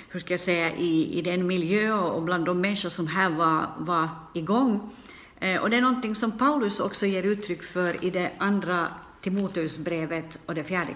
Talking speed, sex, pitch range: 180 wpm, female, 165-205 Hz